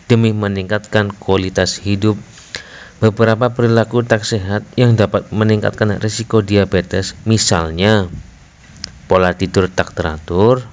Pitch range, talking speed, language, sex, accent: 90-110 Hz, 100 wpm, Indonesian, male, native